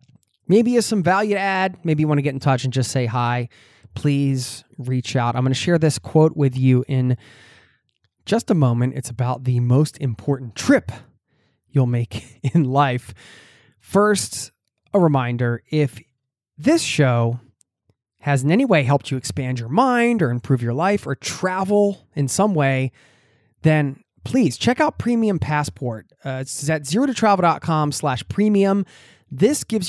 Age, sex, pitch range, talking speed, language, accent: 20-39, male, 120-155 Hz, 160 wpm, English, American